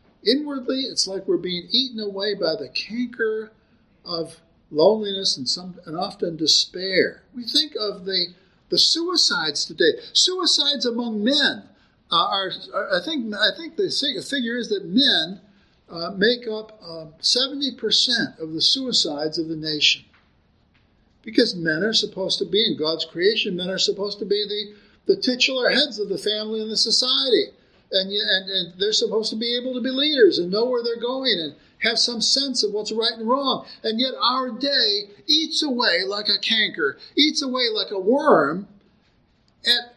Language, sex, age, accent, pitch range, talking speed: English, male, 50-69, American, 200-275 Hz, 175 wpm